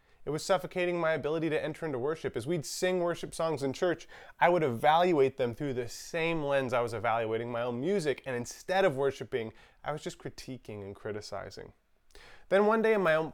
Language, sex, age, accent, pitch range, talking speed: English, male, 30-49, American, 130-180 Hz, 205 wpm